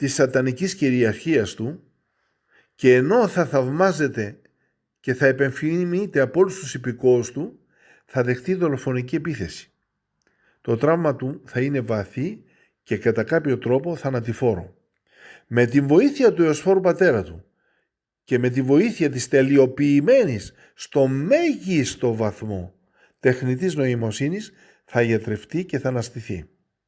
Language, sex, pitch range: Greek, male, 120-170 Hz